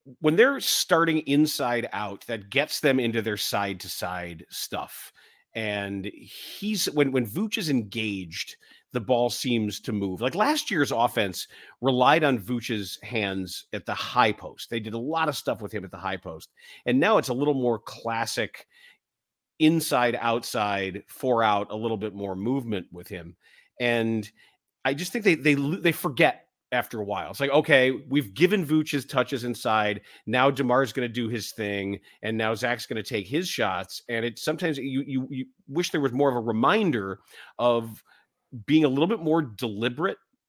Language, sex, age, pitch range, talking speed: English, male, 40-59, 110-145 Hz, 180 wpm